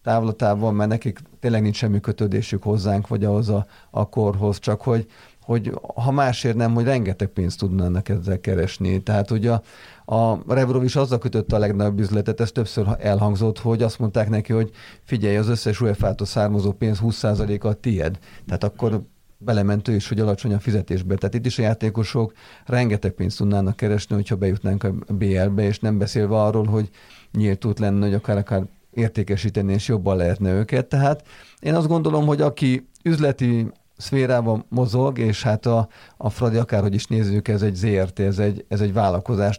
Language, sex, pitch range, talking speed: Hungarian, male, 100-115 Hz, 175 wpm